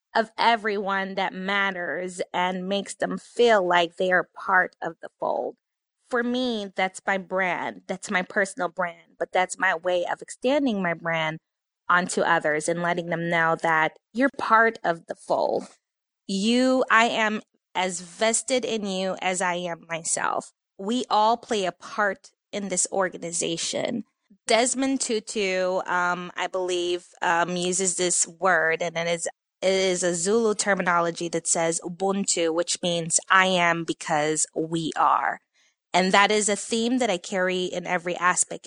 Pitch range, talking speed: 170-205 Hz, 155 wpm